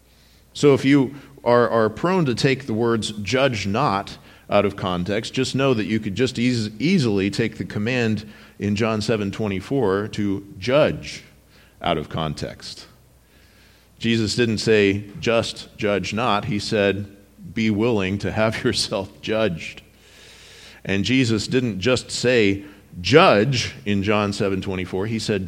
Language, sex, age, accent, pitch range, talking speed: English, male, 40-59, American, 100-125 Hz, 150 wpm